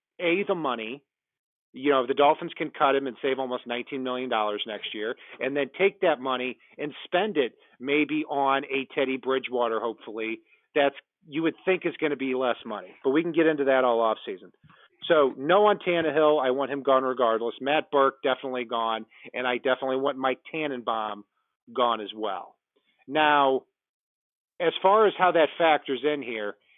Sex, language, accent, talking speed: male, English, American, 180 wpm